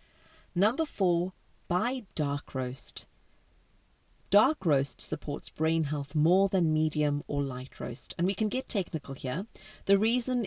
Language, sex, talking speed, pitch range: English, female, 140 wpm, 150-190 Hz